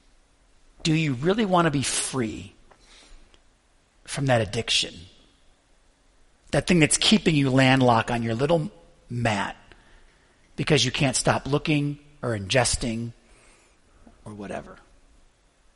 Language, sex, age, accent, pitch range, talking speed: English, male, 40-59, American, 125-200 Hz, 110 wpm